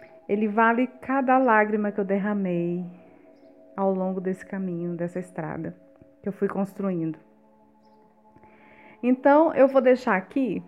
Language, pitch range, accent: Portuguese, 200-255 Hz, Brazilian